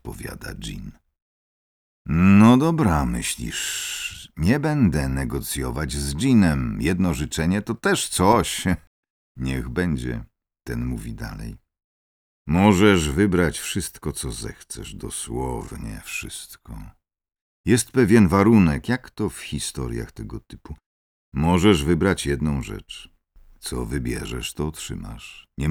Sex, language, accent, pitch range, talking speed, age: male, Polish, native, 70-105 Hz, 105 wpm, 50-69